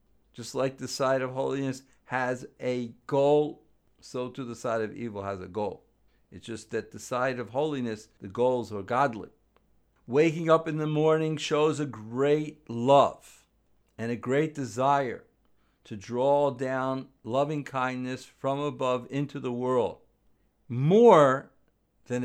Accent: American